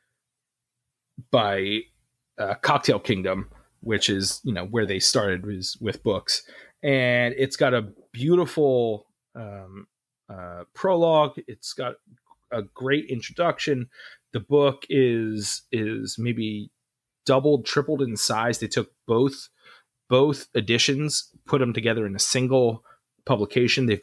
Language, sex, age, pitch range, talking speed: English, male, 30-49, 110-150 Hz, 120 wpm